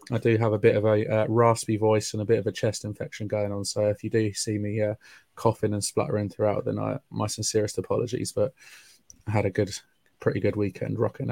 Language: English